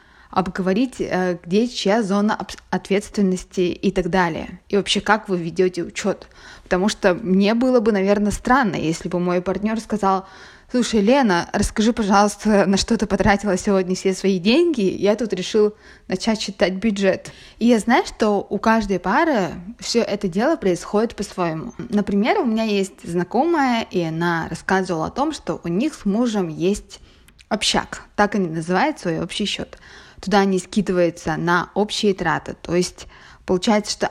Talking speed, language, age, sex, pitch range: 155 wpm, Russian, 20-39, female, 185-220 Hz